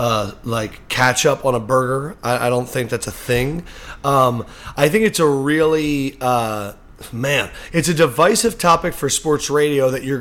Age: 30-49